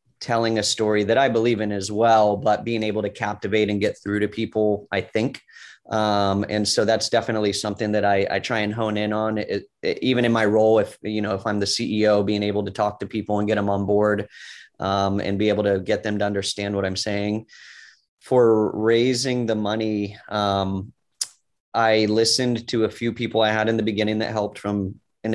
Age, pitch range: 30-49, 100-110 Hz